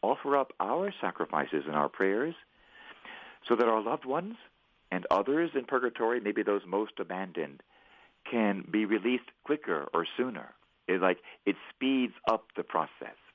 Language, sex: English, male